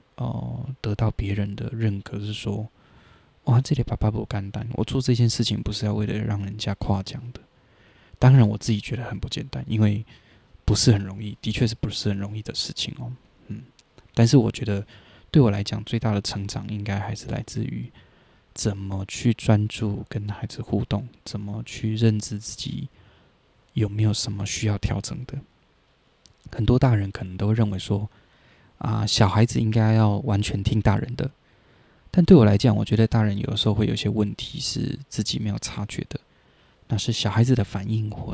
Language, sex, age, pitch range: Chinese, male, 20-39, 100-115 Hz